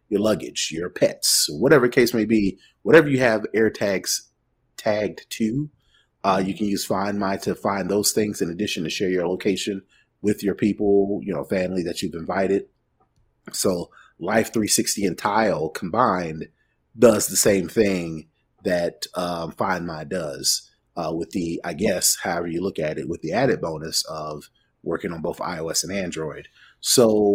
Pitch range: 95-110 Hz